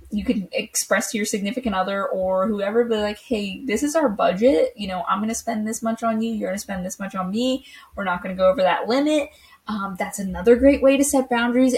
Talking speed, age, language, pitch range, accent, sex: 240 wpm, 20-39, English, 190-240 Hz, American, female